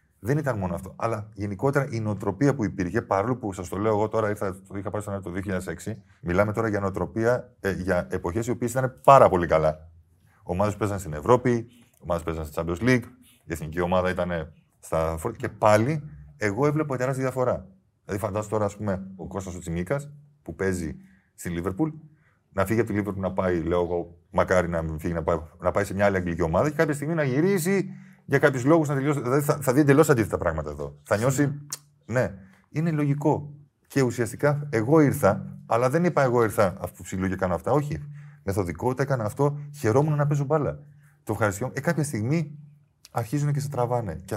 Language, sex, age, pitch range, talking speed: Greek, male, 30-49, 95-145 Hz, 195 wpm